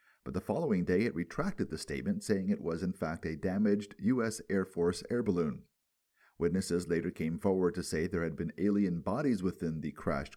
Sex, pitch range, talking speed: male, 90-145 Hz, 195 wpm